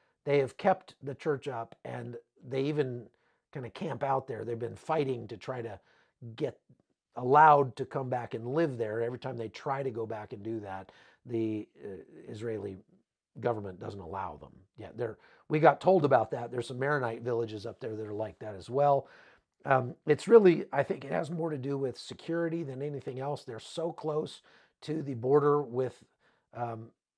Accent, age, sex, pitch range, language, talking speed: American, 40-59, male, 110-140 Hz, English, 190 wpm